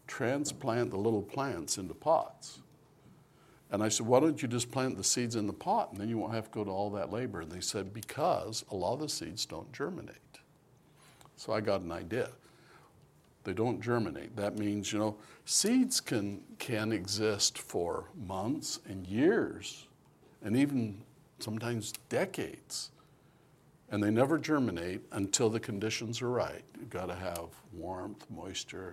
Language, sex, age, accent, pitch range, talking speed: English, male, 60-79, American, 105-135 Hz, 165 wpm